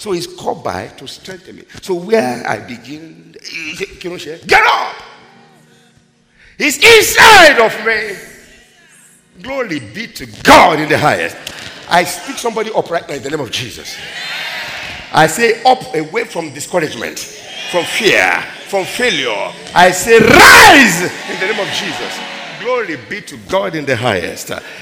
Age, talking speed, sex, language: 50-69, 145 wpm, male, English